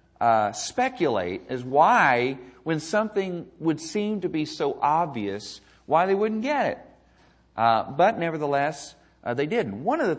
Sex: male